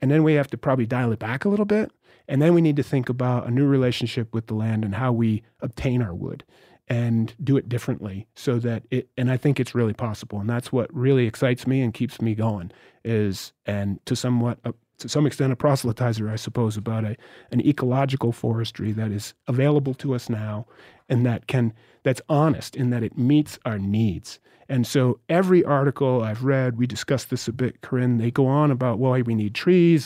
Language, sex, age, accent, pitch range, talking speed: English, male, 30-49, American, 120-155 Hz, 215 wpm